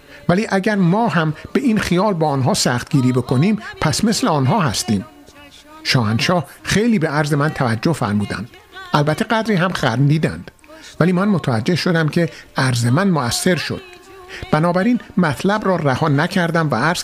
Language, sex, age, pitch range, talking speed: Persian, male, 50-69, 135-195 Hz, 155 wpm